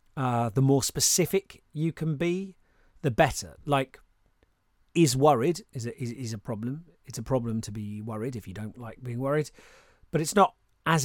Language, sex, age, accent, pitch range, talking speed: English, male, 40-59, British, 125-165 Hz, 180 wpm